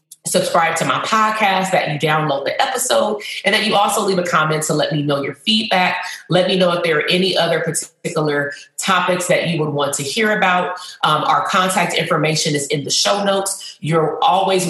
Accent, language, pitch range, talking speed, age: American, English, 150-185 Hz, 205 wpm, 30-49